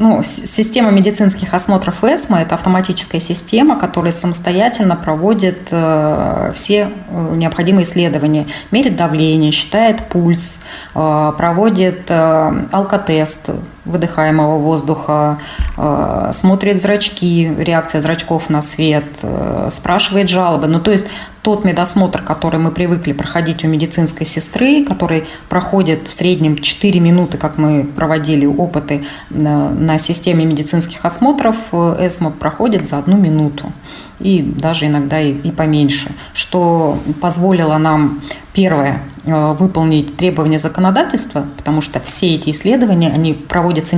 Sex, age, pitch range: female, 20-39, 155-185 Hz